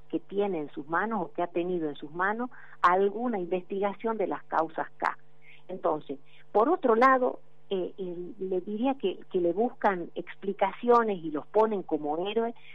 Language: Spanish